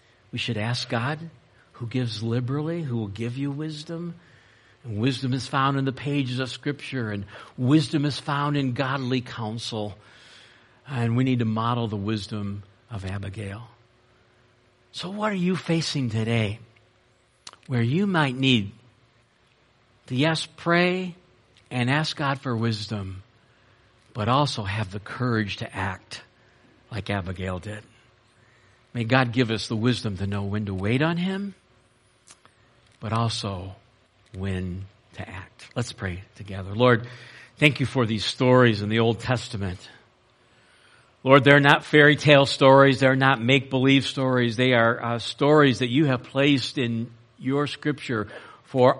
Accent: American